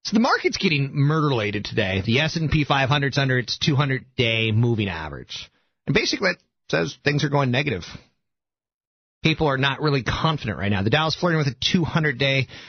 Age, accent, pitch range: 30-49, American, 120-155 Hz